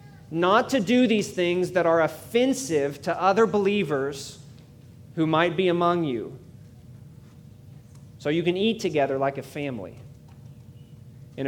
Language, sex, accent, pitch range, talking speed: English, male, American, 135-195 Hz, 130 wpm